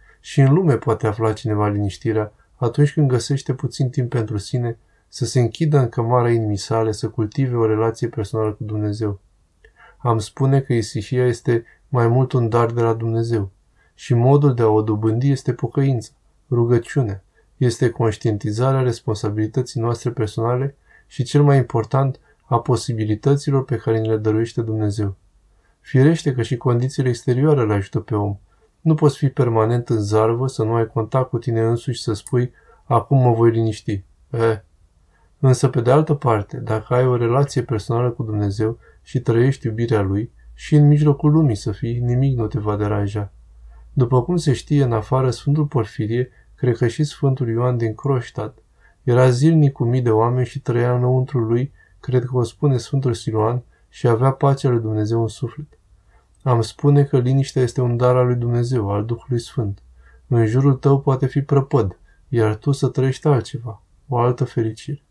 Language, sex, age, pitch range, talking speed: Romanian, male, 20-39, 110-135 Hz, 170 wpm